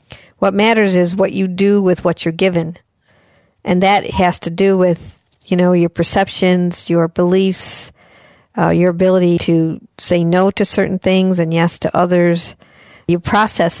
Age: 50-69